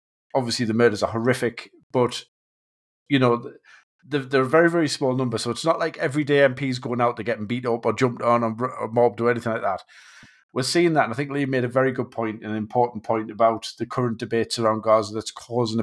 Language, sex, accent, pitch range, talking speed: English, male, British, 115-130 Hz, 220 wpm